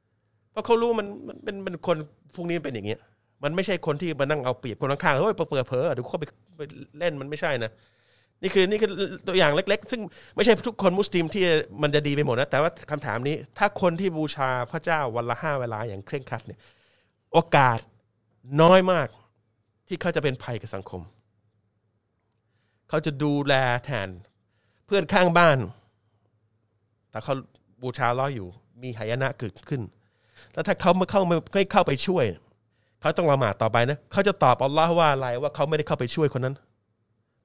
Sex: male